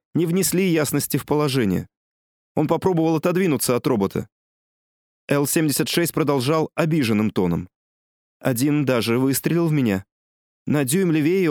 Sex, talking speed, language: male, 115 wpm, Russian